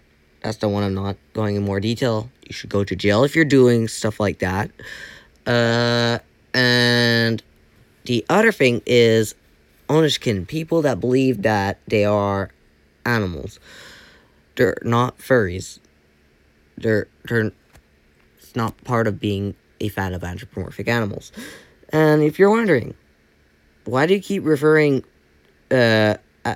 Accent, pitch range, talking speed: American, 90-125 Hz, 135 wpm